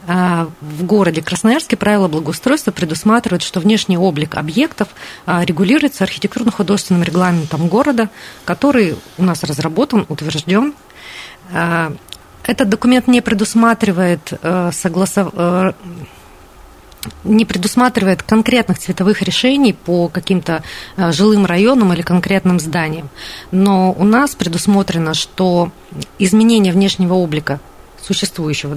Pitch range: 170-215 Hz